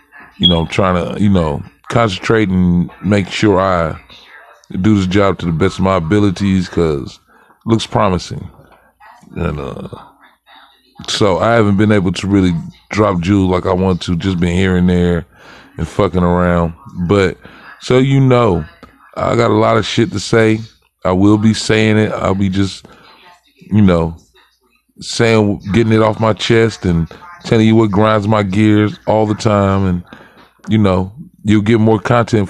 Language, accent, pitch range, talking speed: English, American, 95-110 Hz, 170 wpm